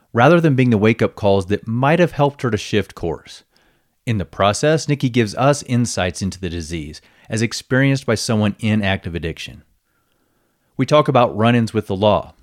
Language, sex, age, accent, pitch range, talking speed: English, male, 30-49, American, 95-130 Hz, 185 wpm